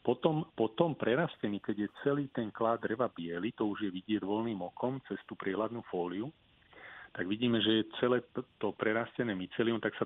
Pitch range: 100-120 Hz